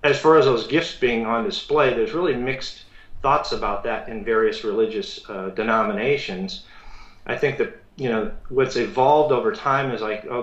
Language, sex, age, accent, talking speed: English, male, 40-59, American, 180 wpm